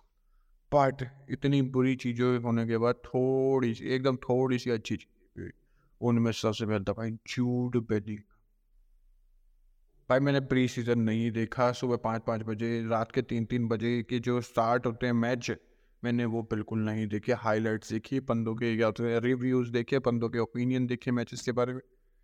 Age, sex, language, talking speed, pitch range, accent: 20-39, male, Hindi, 160 wpm, 115-140 Hz, native